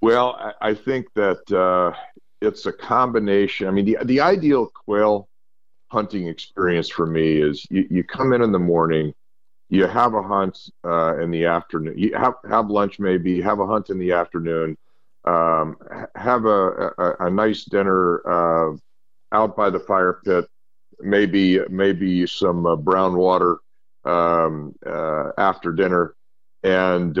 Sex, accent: male, American